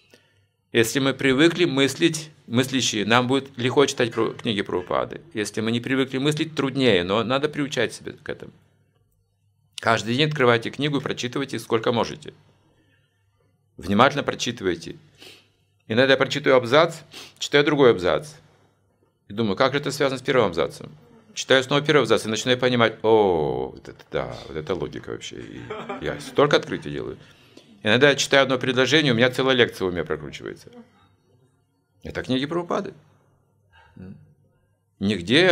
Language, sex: Russian, male